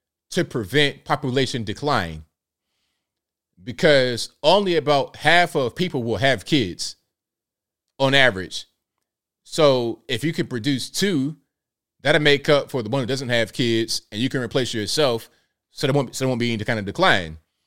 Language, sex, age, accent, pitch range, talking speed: English, male, 30-49, American, 110-145 Hz, 160 wpm